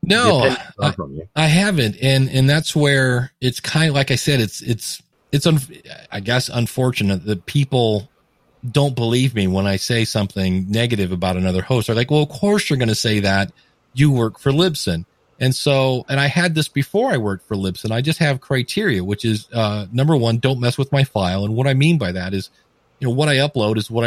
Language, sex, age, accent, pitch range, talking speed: English, male, 40-59, American, 105-140 Hz, 220 wpm